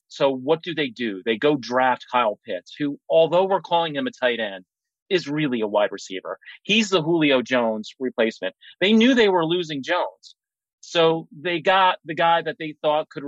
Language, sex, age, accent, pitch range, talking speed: English, male, 30-49, American, 125-165 Hz, 195 wpm